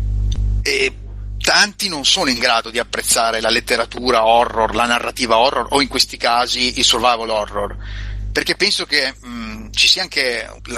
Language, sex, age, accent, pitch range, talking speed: Italian, male, 30-49, native, 100-135 Hz, 160 wpm